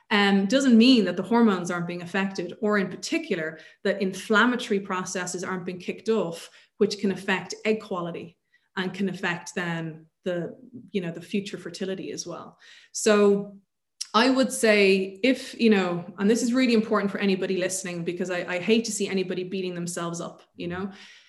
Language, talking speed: English, 180 wpm